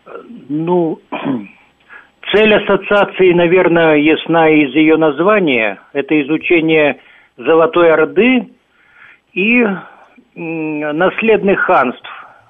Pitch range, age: 155-195 Hz, 50-69